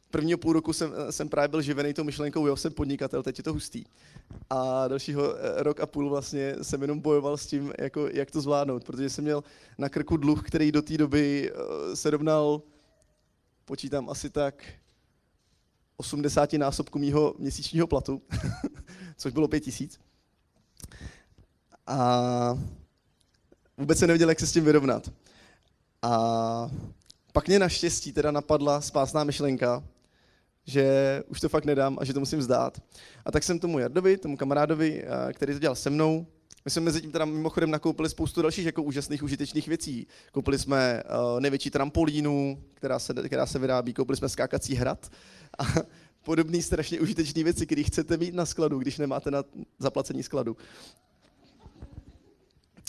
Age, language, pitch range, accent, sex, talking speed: 20-39, Czech, 135-155 Hz, native, male, 155 wpm